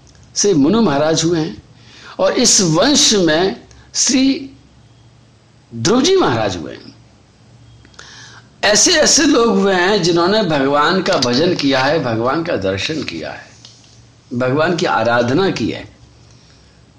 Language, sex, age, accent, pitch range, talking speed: Hindi, male, 60-79, native, 130-195 Hz, 125 wpm